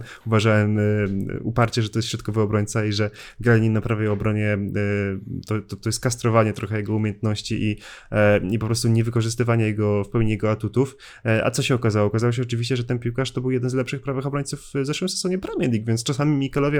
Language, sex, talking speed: Polish, male, 195 wpm